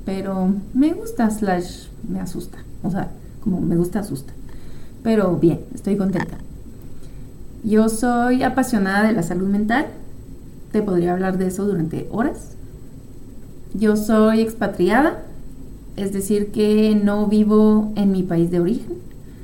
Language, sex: Spanish, female